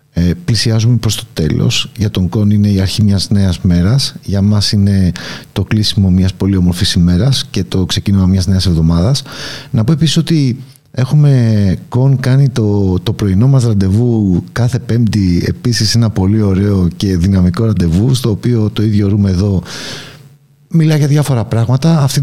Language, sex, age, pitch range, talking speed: Greek, male, 50-69, 100-140 Hz, 165 wpm